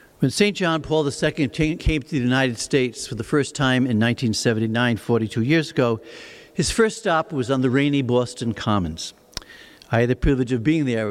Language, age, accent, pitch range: English, 60-79, American, 115-150 Hz